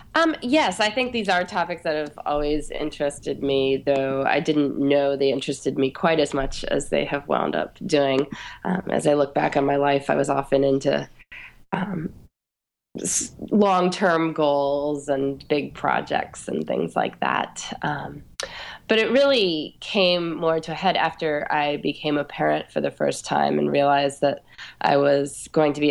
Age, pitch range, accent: 20-39, 140-165 Hz, American